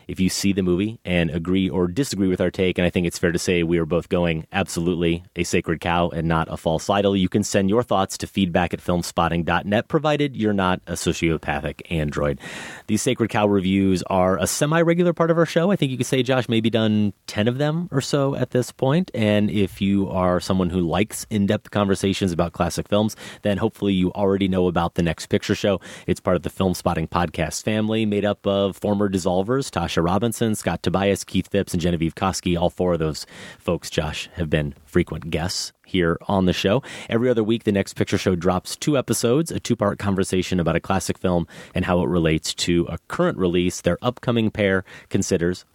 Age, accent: 30-49, American